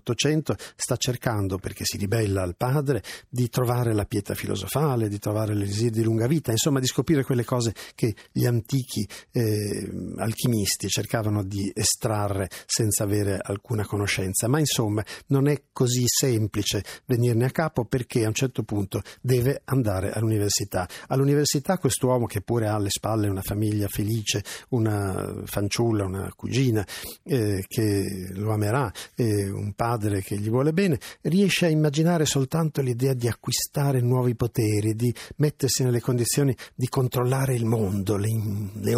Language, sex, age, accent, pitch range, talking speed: Italian, male, 50-69, native, 105-135 Hz, 150 wpm